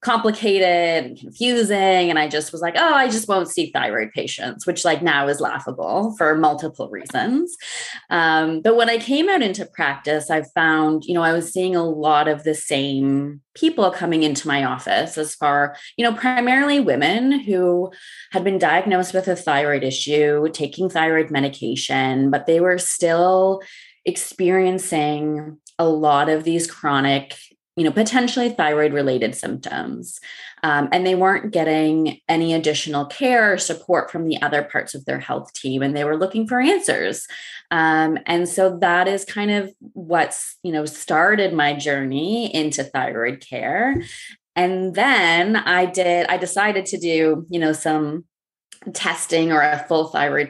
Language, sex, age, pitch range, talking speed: English, female, 20-39, 145-185 Hz, 160 wpm